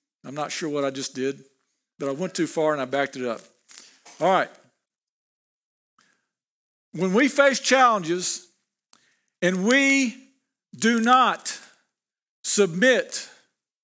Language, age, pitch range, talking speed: English, 50-69, 185-250 Hz, 120 wpm